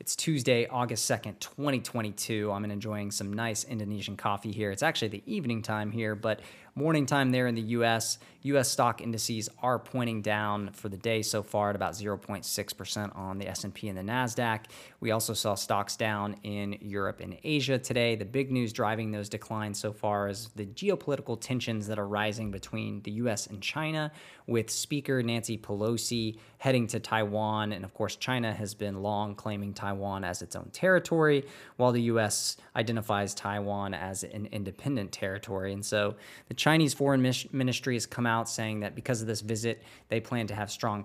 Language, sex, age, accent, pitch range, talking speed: English, male, 20-39, American, 105-120 Hz, 180 wpm